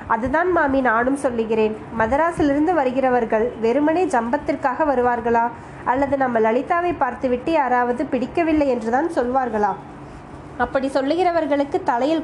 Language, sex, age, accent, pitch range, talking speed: Tamil, female, 20-39, native, 240-295 Hz, 100 wpm